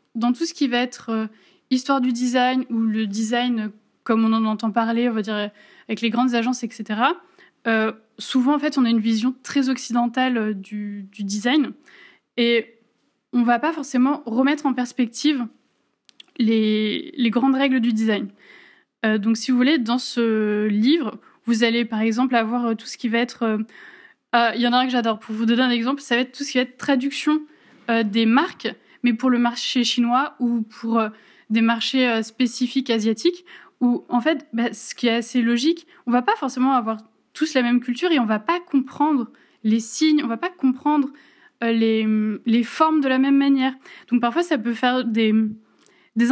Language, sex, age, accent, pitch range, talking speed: French, female, 20-39, French, 225-270 Hz, 210 wpm